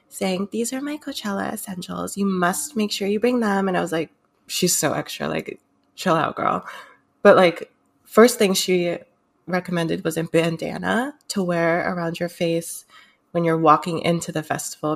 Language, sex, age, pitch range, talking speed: English, female, 20-39, 165-200 Hz, 175 wpm